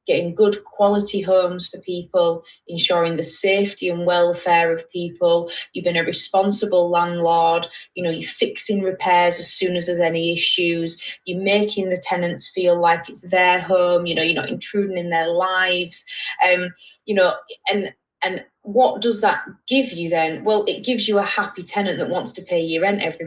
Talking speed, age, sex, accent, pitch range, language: 185 wpm, 20-39, female, British, 170-200 Hz, English